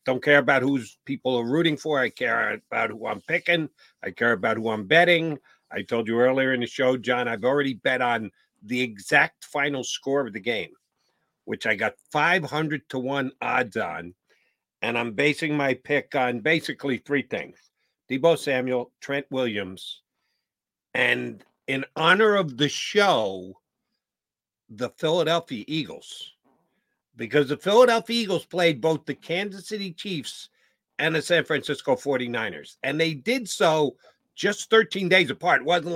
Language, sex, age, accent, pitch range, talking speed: English, male, 50-69, American, 130-180 Hz, 155 wpm